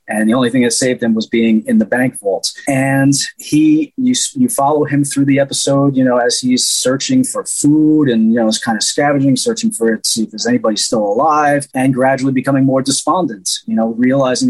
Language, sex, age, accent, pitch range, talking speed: English, male, 30-49, American, 120-150 Hz, 220 wpm